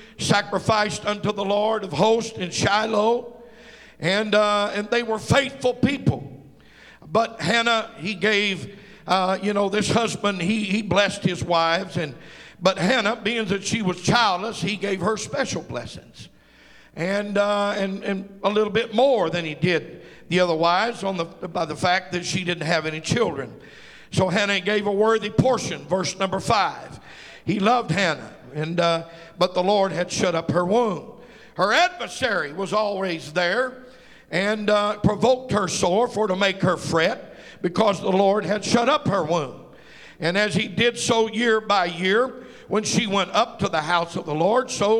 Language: English